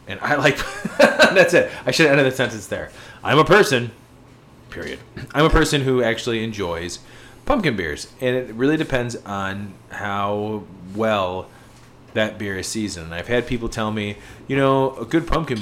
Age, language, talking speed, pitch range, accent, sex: 30-49, English, 175 wpm, 110-145 Hz, American, male